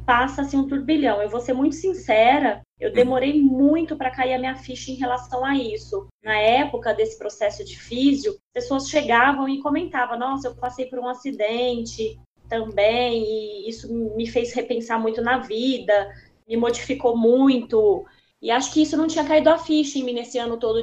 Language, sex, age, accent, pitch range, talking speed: Portuguese, female, 20-39, Brazilian, 220-265 Hz, 180 wpm